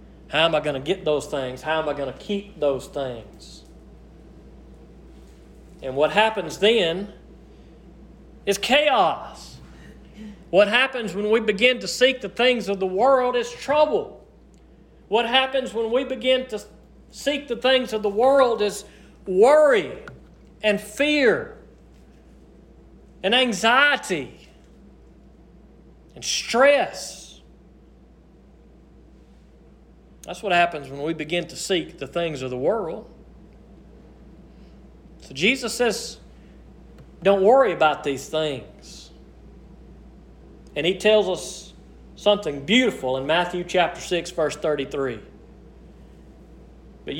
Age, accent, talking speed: 40-59, American, 115 wpm